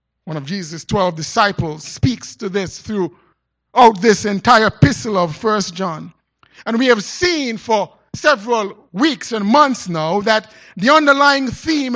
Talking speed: 145 wpm